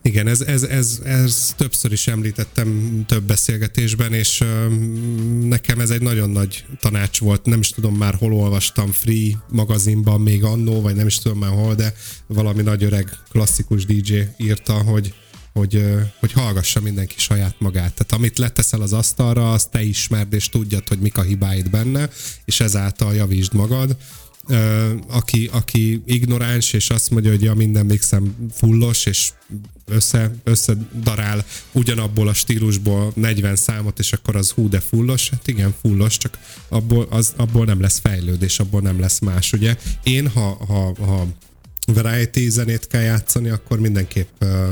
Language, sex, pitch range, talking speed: Hungarian, male, 100-115 Hz, 155 wpm